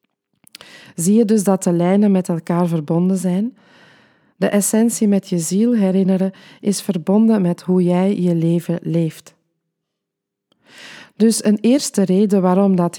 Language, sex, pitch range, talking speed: Dutch, female, 175-215 Hz, 140 wpm